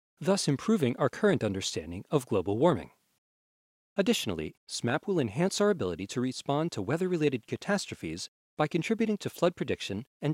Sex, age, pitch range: male, 40-59, 110-170 Hz